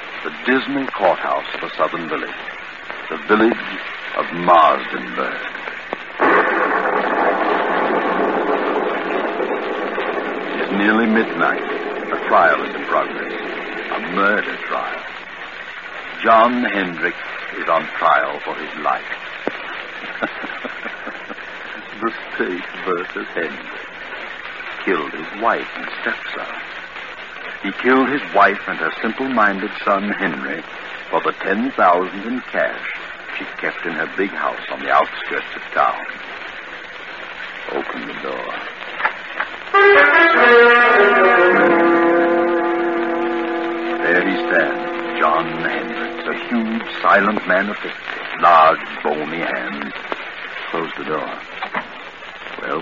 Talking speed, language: 100 wpm, English